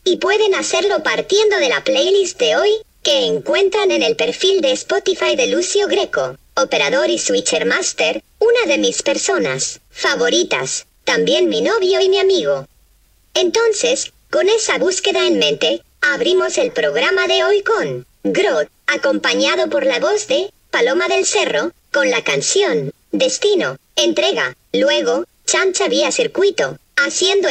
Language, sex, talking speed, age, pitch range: Spanish, male, 140 wpm, 50-69, 345-460 Hz